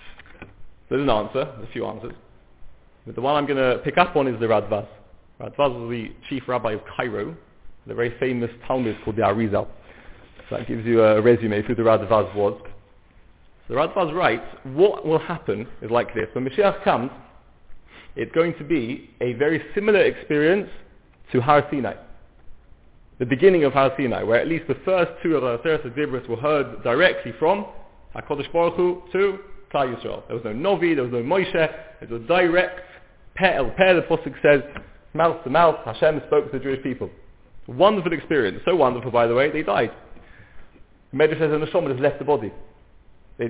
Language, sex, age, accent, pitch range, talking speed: English, male, 30-49, British, 115-160 Hz, 180 wpm